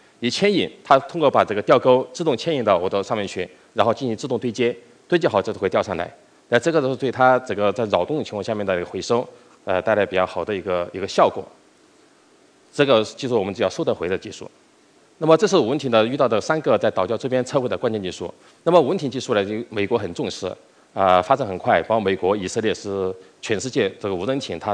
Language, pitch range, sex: Chinese, 100-130 Hz, male